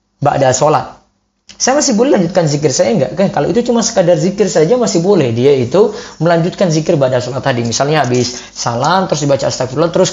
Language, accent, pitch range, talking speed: Indonesian, native, 130-190 Hz, 190 wpm